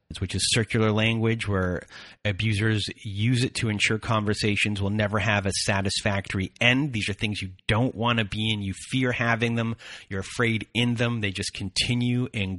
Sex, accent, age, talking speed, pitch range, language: male, American, 30-49, 180 wpm, 100-120 Hz, English